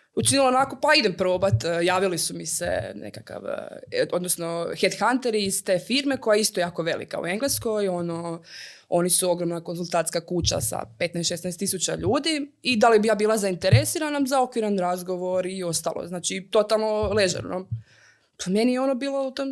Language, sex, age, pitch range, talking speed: Croatian, female, 20-39, 180-235 Hz, 165 wpm